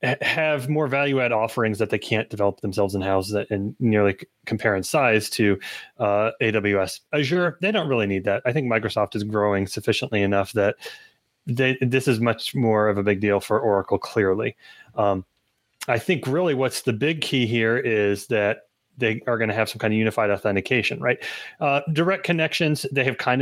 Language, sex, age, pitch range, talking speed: English, male, 30-49, 110-130 Hz, 180 wpm